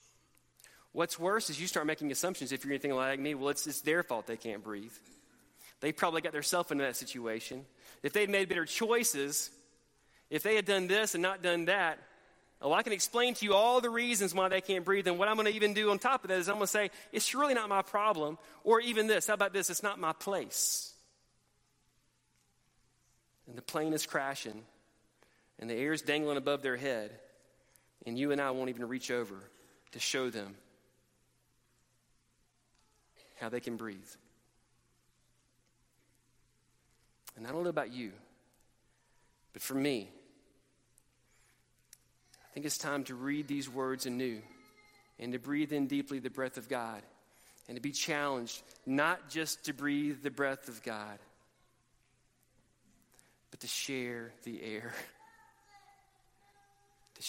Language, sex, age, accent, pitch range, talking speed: English, male, 30-49, American, 120-190 Hz, 165 wpm